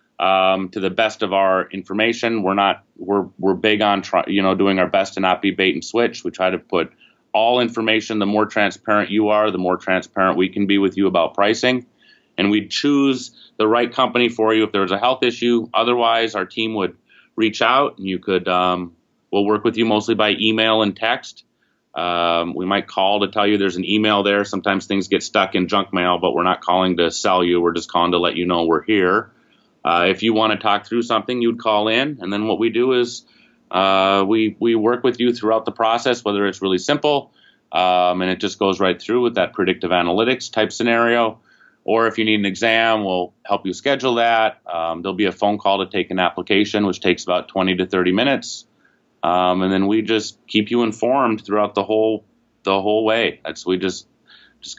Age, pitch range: 30-49, 95-110 Hz